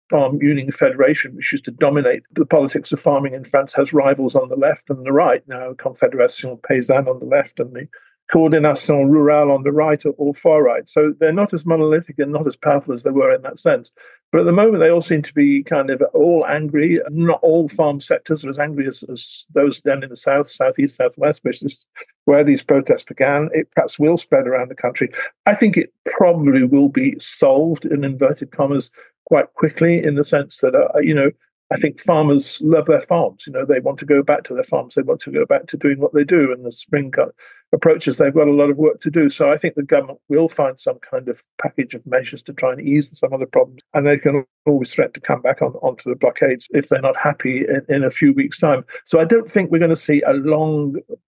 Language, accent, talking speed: English, British, 245 wpm